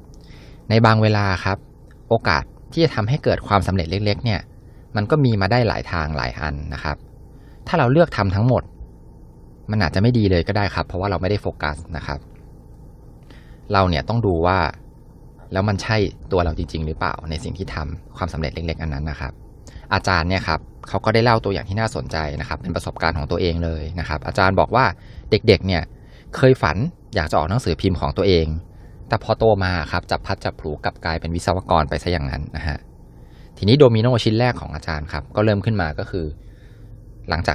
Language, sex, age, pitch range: Thai, male, 20-39, 80-110 Hz